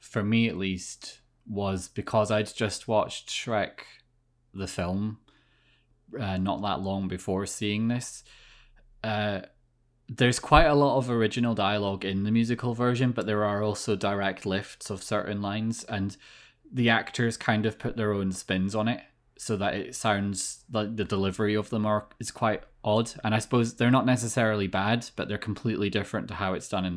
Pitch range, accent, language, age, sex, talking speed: 100-115 Hz, British, English, 20-39, male, 175 wpm